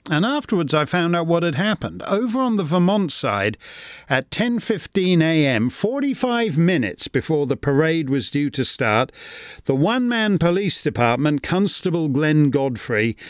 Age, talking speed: 40-59, 140 wpm